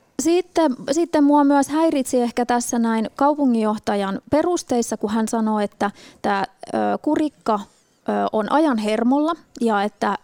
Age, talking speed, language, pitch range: 30-49, 125 wpm, Finnish, 210-265 Hz